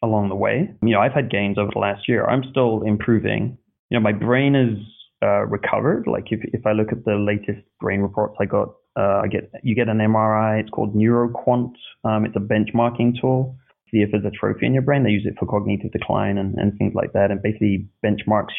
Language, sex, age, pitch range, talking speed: English, male, 20-39, 100-115 Hz, 230 wpm